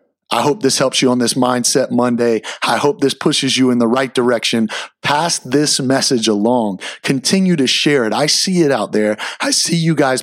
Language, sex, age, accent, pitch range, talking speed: English, male, 30-49, American, 125-155 Hz, 205 wpm